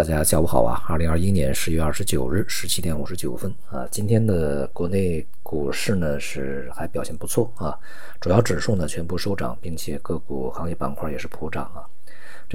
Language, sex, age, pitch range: Chinese, male, 50-69, 75-95 Hz